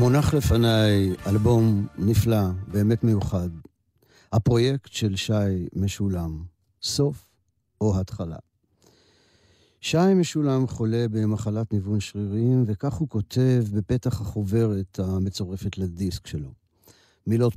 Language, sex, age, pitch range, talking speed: Hebrew, male, 50-69, 95-125 Hz, 95 wpm